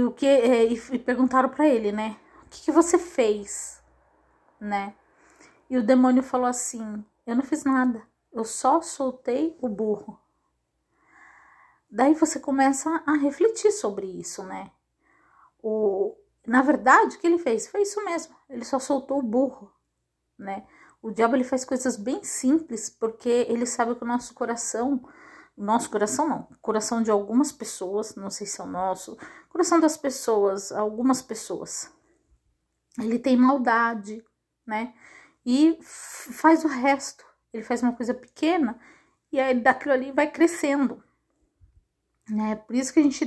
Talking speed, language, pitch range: 150 wpm, Portuguese, 220-275 Hz